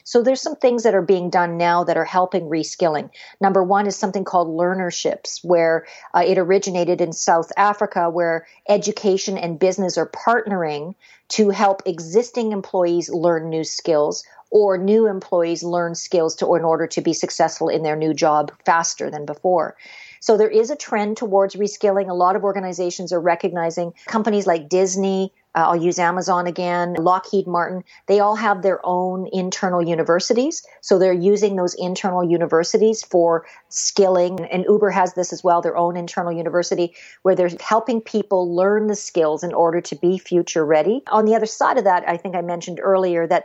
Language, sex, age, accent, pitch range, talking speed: English, female, 50-69, American, 170-200 Hz, 180 wpm